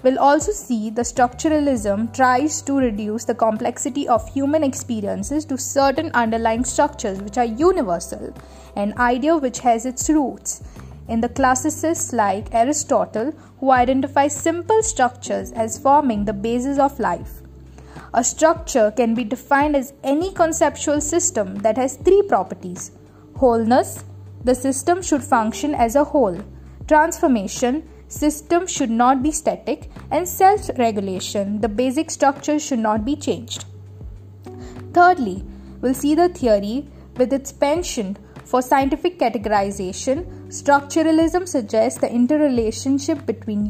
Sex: female